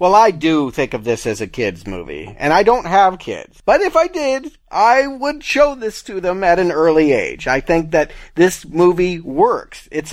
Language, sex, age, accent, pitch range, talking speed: English, male, 40-59, American, 135-180 Hz, 215 wpm